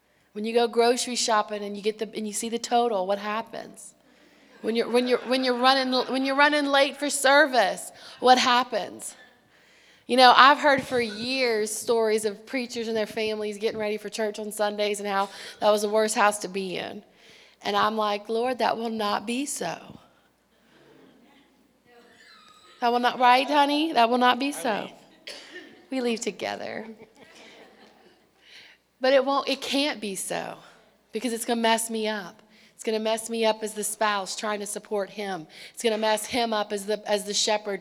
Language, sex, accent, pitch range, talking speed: English, female, American, 210-245 Hz, 185 wpm